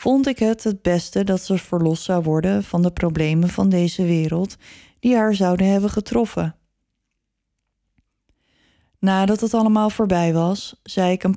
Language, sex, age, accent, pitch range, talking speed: Dutch, female, 20-39, Dutch, 175-210 Hz, 155 wpm